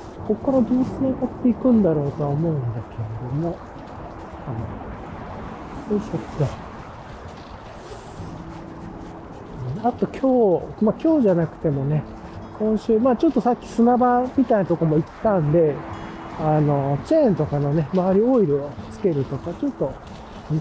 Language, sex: Japanese, male